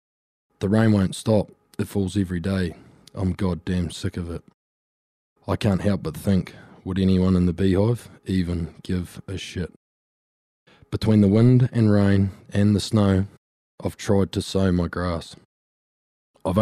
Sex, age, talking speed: male, 20-39, 150 wpm